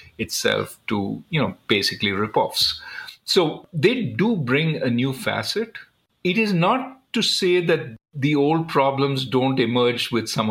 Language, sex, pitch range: English, male, 110-145 Hz